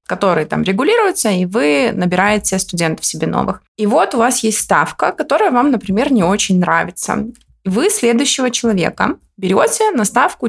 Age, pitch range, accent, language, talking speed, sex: 20-39, 190-240 Hz, native, Russian, 155 wpm, female